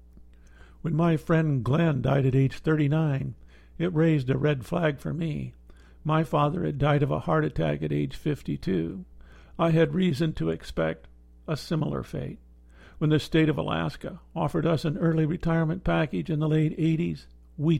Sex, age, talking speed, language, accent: male, 50-69, 170 wpm, English, American